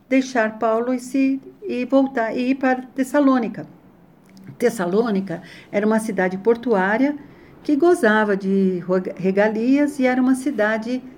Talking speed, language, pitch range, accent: 125 wpm, Portuguese, 190-255 Hz, Brazilian